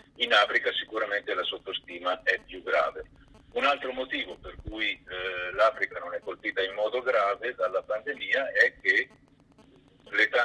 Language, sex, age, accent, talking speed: Italian, male, 50-69, native, 150 wpm